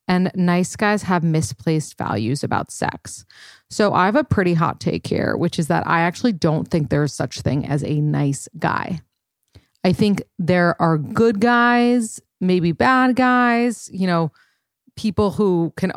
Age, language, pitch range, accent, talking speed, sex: 30-49, English, 170-215 Hz, American, 165 wpm, female